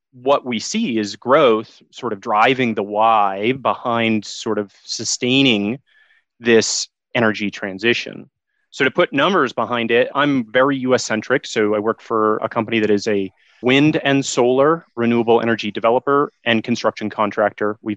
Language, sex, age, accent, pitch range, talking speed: English, male, 30-49, American, 110-140 Hz, 155 wpm